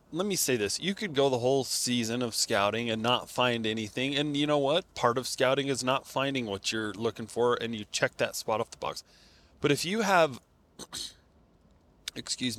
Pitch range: 105-140 Hz